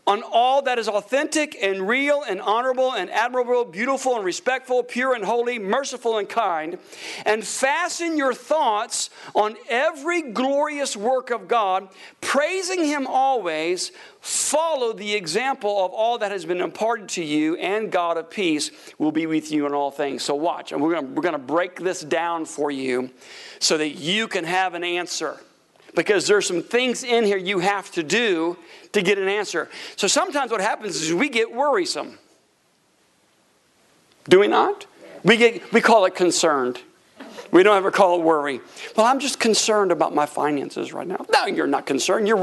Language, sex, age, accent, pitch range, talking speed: English, male, 50-69, American, 180-265 Hz, 175 wpm